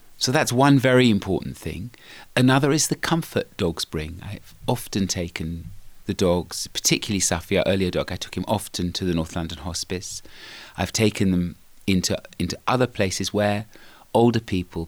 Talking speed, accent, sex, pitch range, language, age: 165 wpm, British, male, 95-120 Hz, English, 30-49